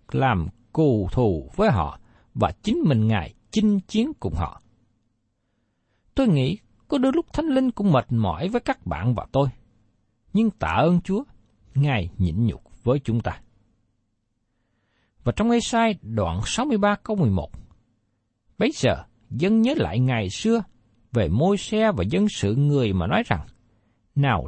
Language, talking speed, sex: Vietnamese, 155 wpm, male